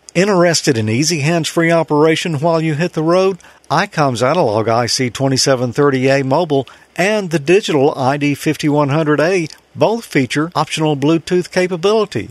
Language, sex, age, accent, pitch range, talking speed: English, male, 50-69, American, 140-190 Hz, 115 wpm